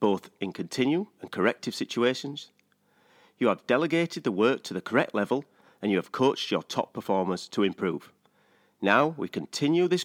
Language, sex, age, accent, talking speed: English, male, 40-59, British, 165 wpm